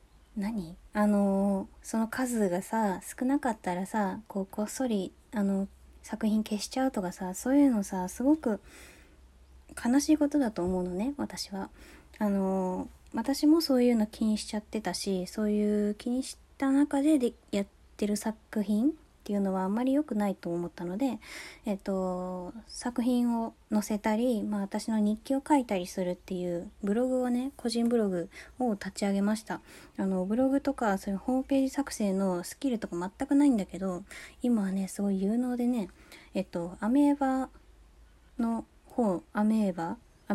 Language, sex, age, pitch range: Japanese, female, 20-39, 195-250 Hz